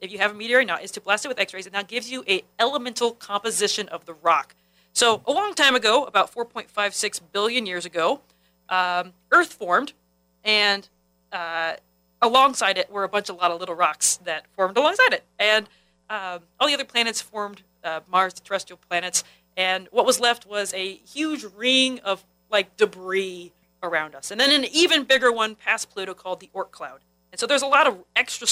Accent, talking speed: American, 200 wpm